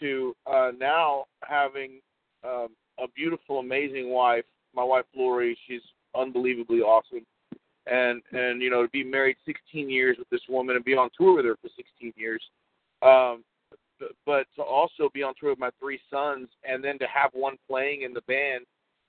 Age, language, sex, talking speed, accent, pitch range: 50-69, English, male, 175 wpm, American, 125-165 Hz